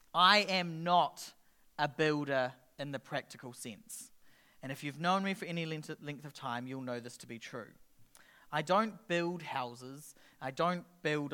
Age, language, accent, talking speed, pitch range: 40-59, English, Australian, 170 wpm, 150-210 Hz